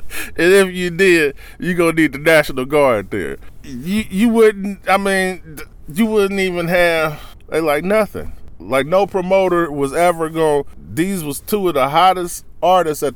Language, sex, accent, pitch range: English, male, American, 120-180 Hz